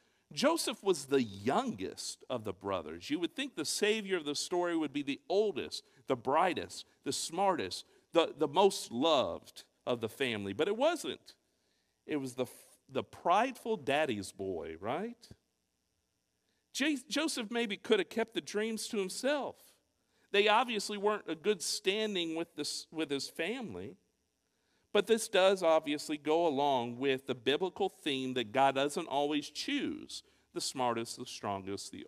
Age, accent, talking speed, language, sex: 50-69, American, 155 wpm, English, male